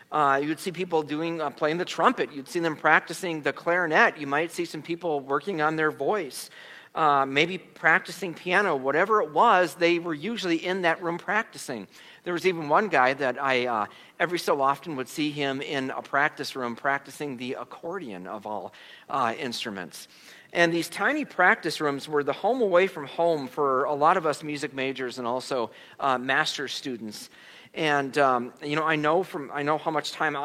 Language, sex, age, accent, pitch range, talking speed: English, male, 40-59, American, 135-165 Hz, 195 wpm